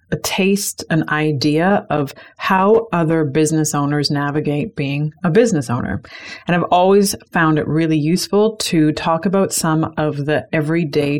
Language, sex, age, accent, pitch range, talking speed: English, female, 30-49, American, 150-185 Hz, 150 wpm